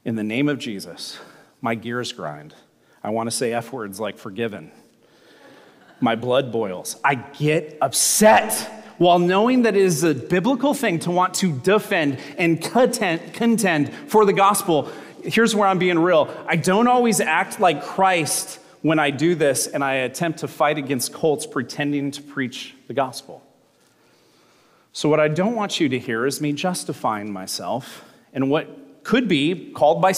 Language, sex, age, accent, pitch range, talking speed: English, male, 30-49, American, 130-180 Hz, 165 wpm